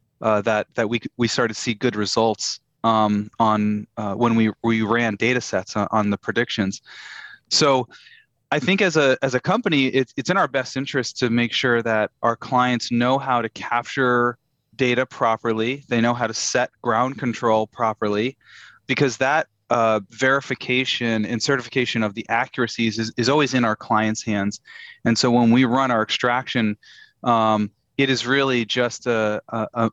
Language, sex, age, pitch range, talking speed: English, male, 30-49, 110-130 Hz, 175 wpm